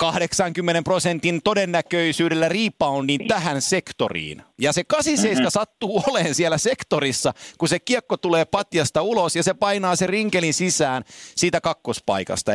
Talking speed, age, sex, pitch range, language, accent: 130 wpm, 50-69, male, 145-190 Hz, Finnish, native